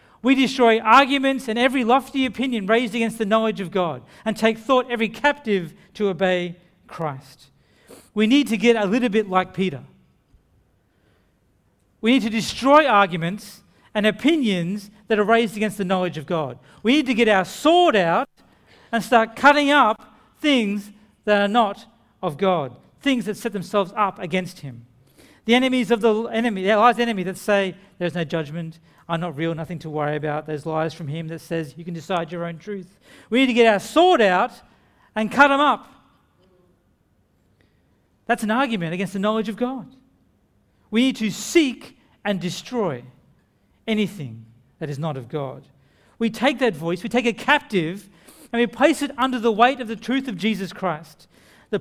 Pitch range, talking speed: 170-235 Hz, 180 wpm